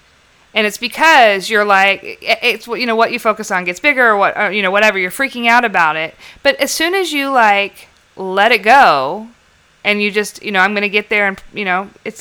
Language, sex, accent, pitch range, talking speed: English, female, American, 195-235 Hz, 230 wpm